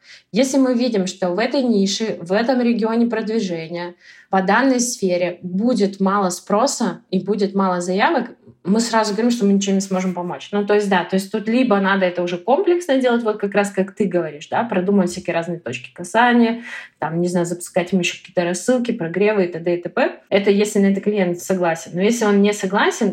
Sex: female